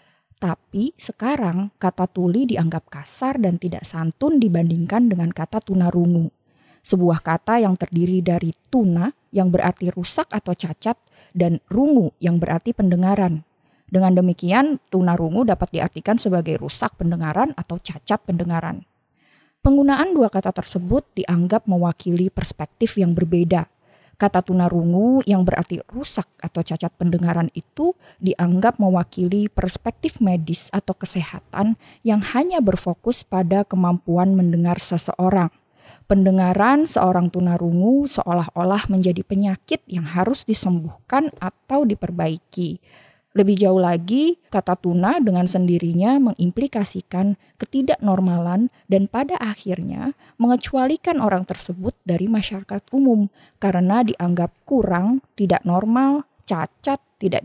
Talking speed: 115 wpm